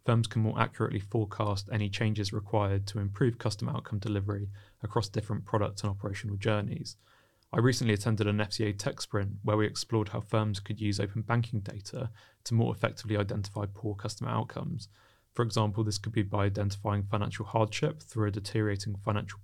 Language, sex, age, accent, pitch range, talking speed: English, male, 20-39, British, 105-115 Hz, 175 wpm